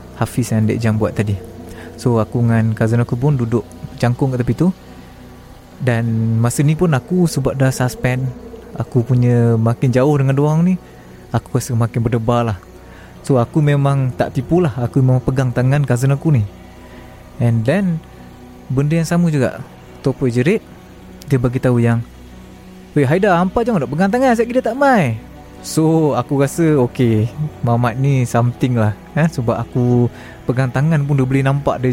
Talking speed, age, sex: 170 wpm, 20-39, male